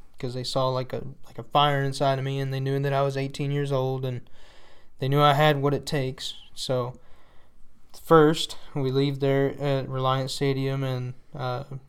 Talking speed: 190 wpm